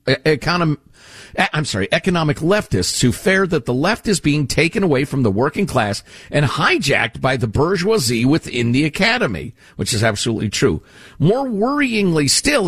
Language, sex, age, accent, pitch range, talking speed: English, male, 50-69, American, 125-195 Hz, 150 wpm